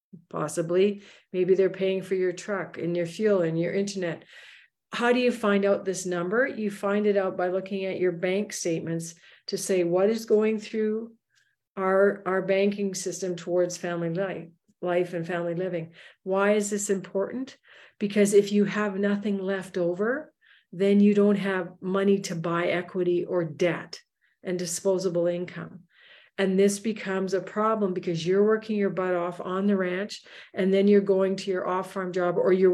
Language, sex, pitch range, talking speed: English, female, 180-200 Hz, 175 wpm